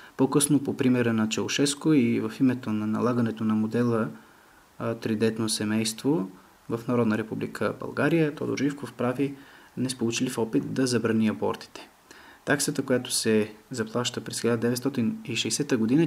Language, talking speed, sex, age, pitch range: Bulgarian, 130 wpm, male, 20-39, 115-140 Hz